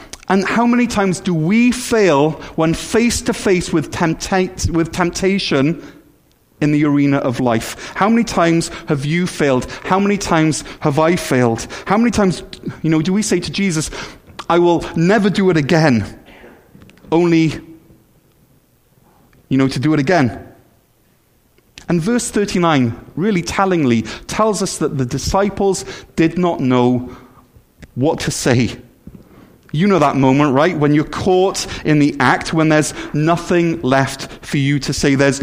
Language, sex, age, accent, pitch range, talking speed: English, male, 30-49, British, 145-190 Hz, 150 wpm